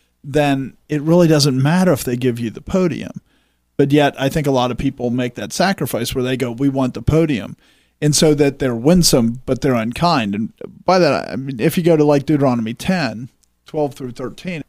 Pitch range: 125-165 Hz